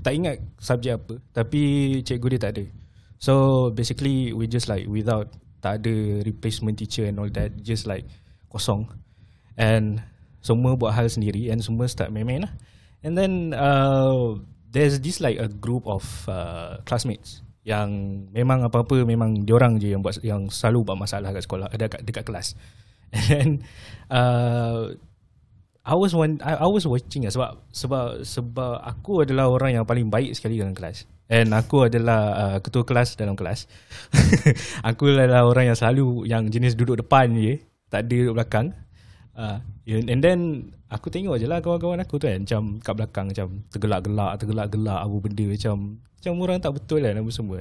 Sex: male